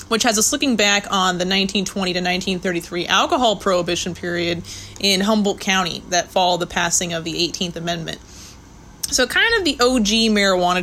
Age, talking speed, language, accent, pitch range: 20-39, 165 wpm, English, American, 175-210 Hz